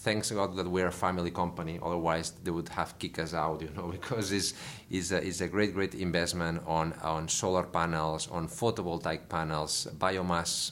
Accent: Spanish